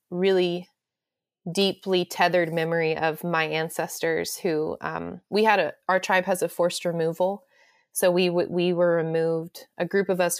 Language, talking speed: English, 155 wpm